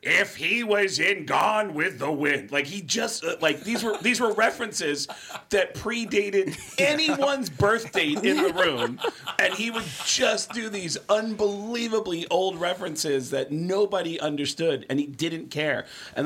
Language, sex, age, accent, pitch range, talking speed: English, male, 40-59, American, 125-195 Hz, 155 wpm